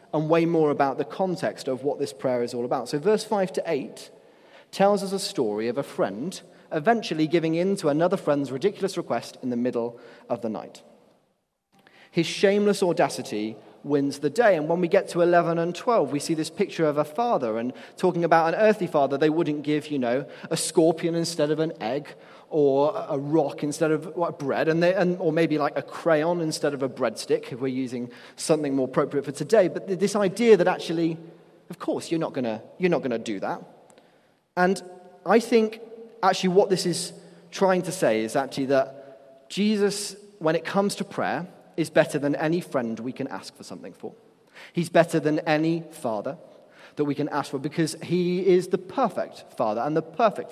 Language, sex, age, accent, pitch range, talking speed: English, male, 30-49, British, 140-185 Hz, 195 wpm